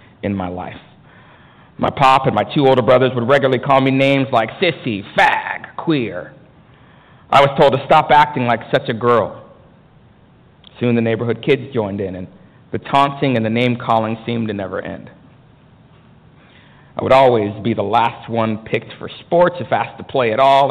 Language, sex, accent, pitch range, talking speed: English, male, American, 110-135 Hz, 180 wpm